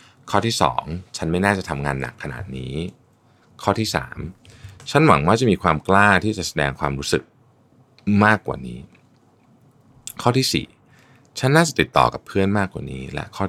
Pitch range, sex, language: 80-120 Hz, male, Thai